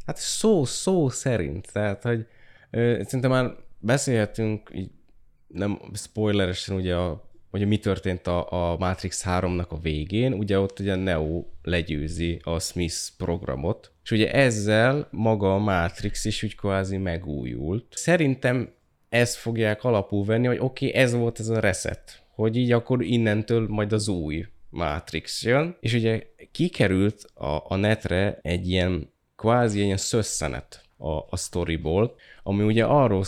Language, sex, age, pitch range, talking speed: Hungarian, male, 20-39, 85-115 Hz, 150 wpm